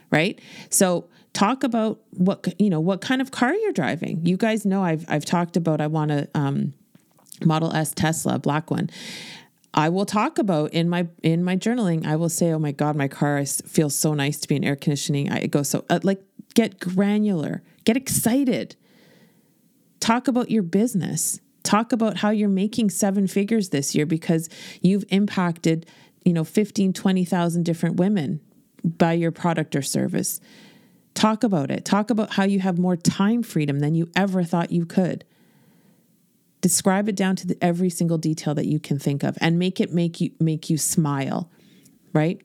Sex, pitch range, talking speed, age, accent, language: female, 160-205 Hz, 180 wpm, 30-49, American, English